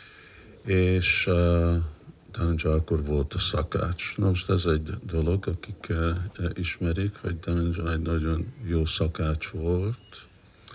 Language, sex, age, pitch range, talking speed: Hungarian, male, 50-69, 85-95 Hz, 125 wpm